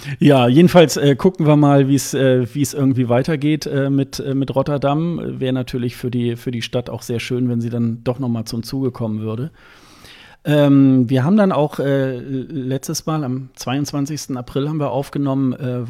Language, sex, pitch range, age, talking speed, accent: German, male, 125-145 Hz, 40-59, 180 wpm, German